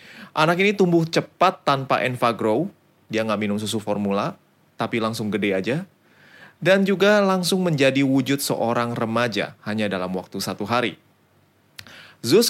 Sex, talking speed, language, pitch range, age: male, 135 wpm, Indonesian, 105-145 Hz, 20-39